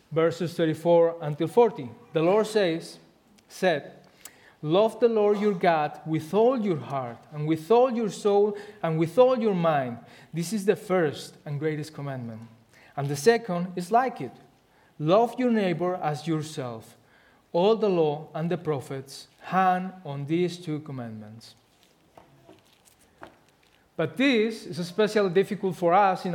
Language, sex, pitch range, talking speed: English, male, 150-205 Hz, 145 wpm